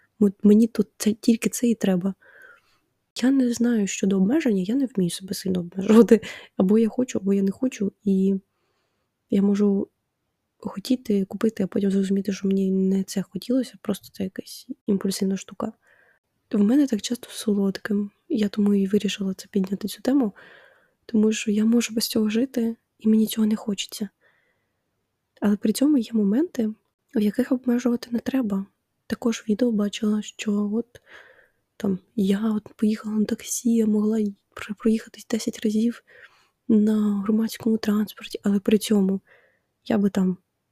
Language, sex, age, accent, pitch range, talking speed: Ukrainian, female, 20-39, native, 200-235 Hz, 155 wpm